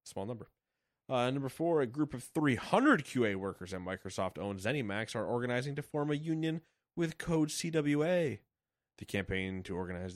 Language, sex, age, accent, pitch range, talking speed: English, male, 20-39, American, 105-140 Hz, 160 wpm